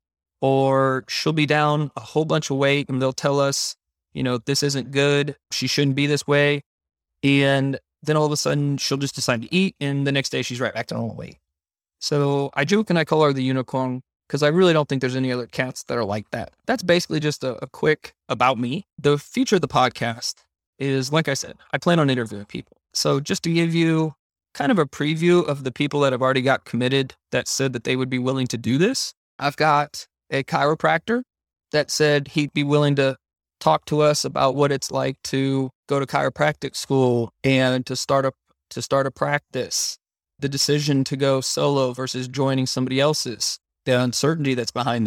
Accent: American